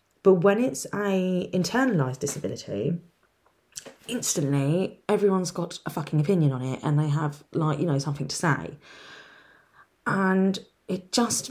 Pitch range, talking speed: 150-185 Hz, 135 wpm